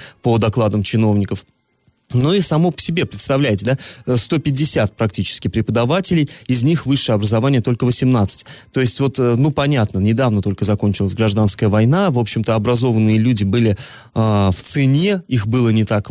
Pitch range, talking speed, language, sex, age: 110-155 Hz, 155 wpm, Russian, male, 20-39